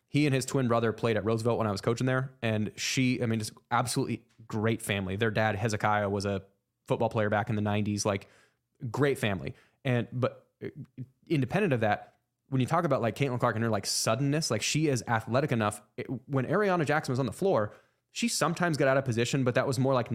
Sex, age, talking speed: male, 20-39, 220 wpm